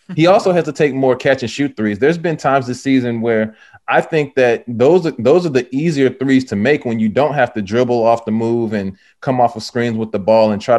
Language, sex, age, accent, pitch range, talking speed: English, male, 20-39, American, 115-145 Hz, 255 wpm